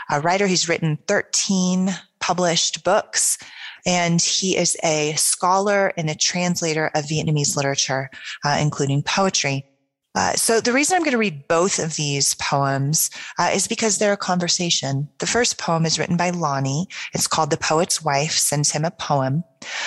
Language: English